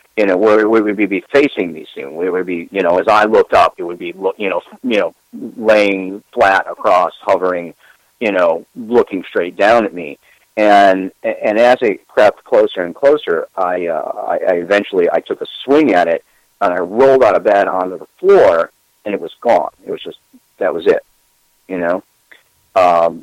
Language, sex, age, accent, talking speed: English, male, 40-59, American, 195 wpm